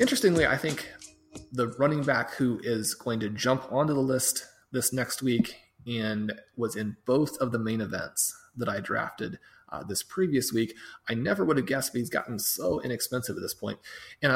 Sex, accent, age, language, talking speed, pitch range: male, American, 30-49, English, 190 wpm, 110-130 Hz